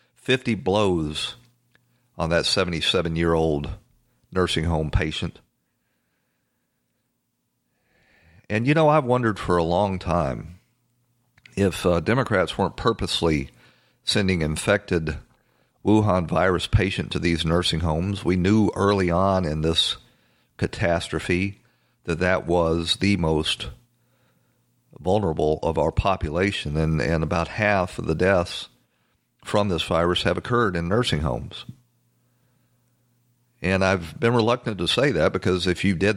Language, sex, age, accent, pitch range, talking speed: English, male, 50-69, American, 85-110 Hz, 120 wpm